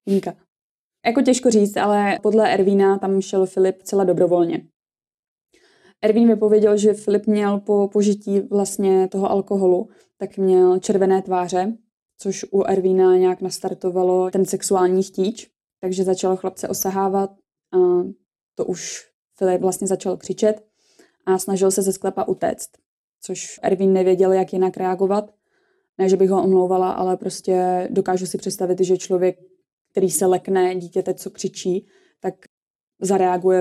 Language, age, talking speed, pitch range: Czech, 20-39, 140 wpm, 185-200 Hz